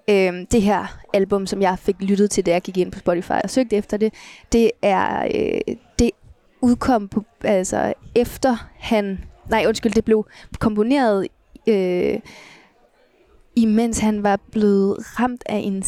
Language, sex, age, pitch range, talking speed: Danish, female, 20-39, 195-225 Hz, 140 wpm